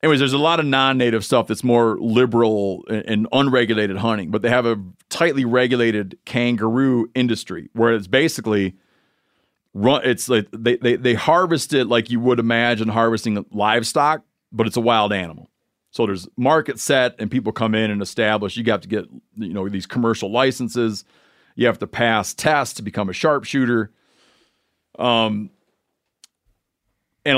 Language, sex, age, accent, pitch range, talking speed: English, male, 40-59, American, 110-130 Hz, 160 wpm